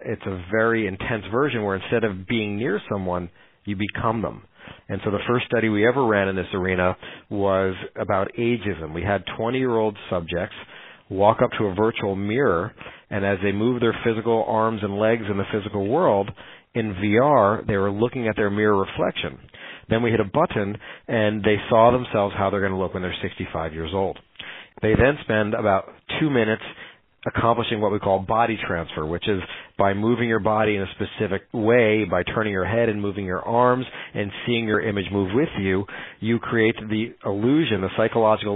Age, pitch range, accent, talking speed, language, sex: 40-59, 100-115 Hz, American, 190 wpm, English, male